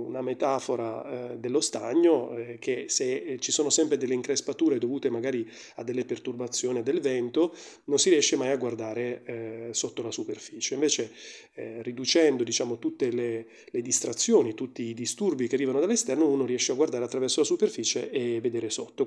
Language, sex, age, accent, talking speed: Italian, male, 30-49, native, 155 wpm